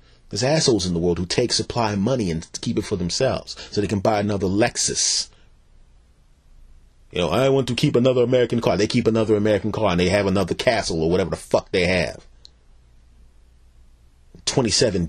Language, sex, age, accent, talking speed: English, male, 30-49, American, 185 wpm